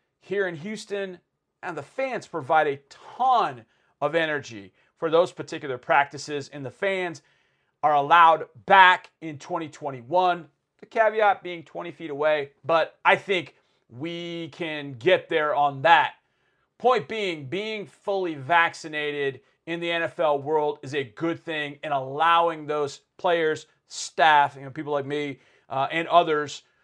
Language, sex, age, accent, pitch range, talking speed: English, male, 40-59, American, 145-180 Hz, 145 wpm